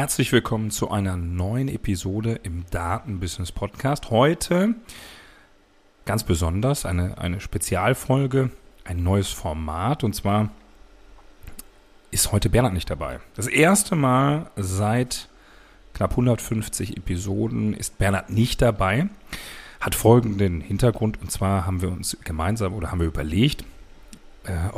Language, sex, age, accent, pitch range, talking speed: German, male, 40-59, German, 95-120 Hz, 120 wpm